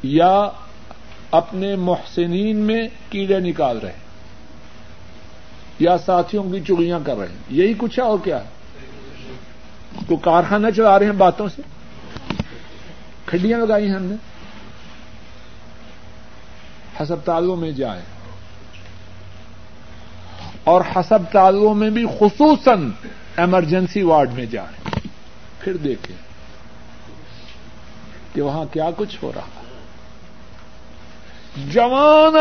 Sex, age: male, 60-79